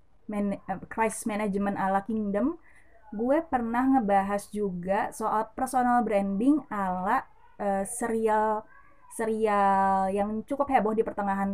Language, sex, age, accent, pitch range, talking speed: Indonesian, female, 20-39, native, 190-235 Hz, 115 wpm